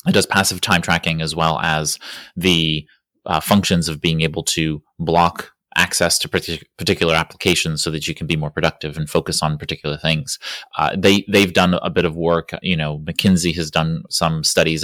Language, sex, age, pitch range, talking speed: English, male, 30-49, 80-90 Hz, 195 wpm